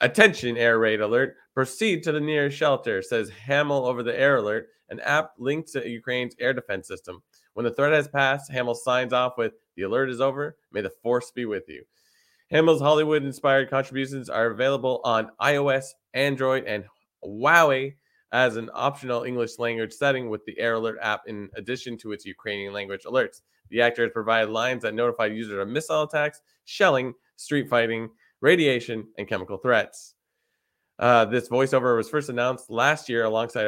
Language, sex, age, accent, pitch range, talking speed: English, male, 20-39, American, 115-135 Hz, 175 wpm